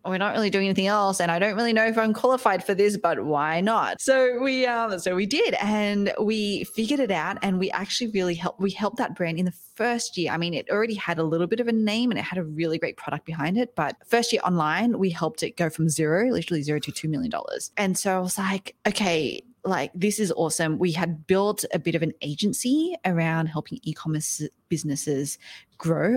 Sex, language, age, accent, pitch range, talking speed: female, English, 20-39, Australian, 160-210 Hz, 230 wpm